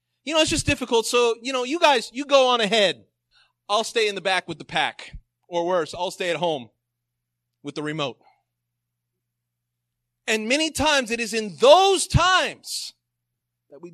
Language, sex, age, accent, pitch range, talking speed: English, male, 30-49, American, 120-200 Hz, 175 wpm